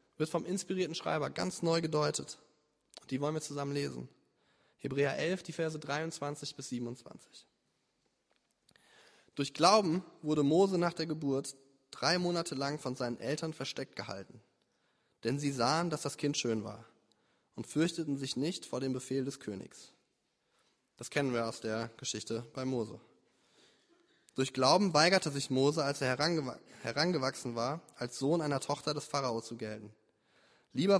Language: German